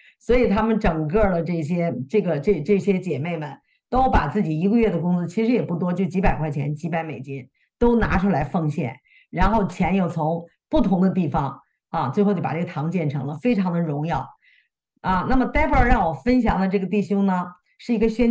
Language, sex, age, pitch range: Chinese, female, 50-69, 175-250 Hz